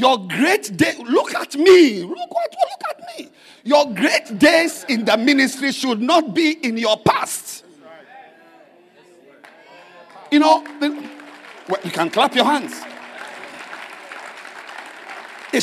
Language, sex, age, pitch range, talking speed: English, male, 50-69, 210-330 Hz, 120 wpm